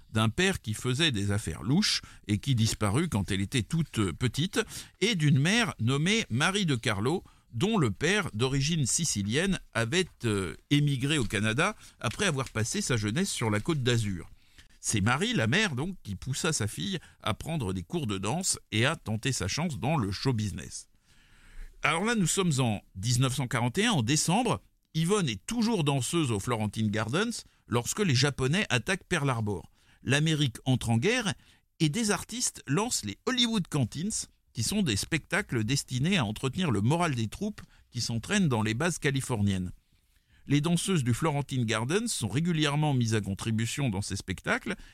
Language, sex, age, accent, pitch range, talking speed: French, male, 50-69, French, 110-170 Hz, 170 wpm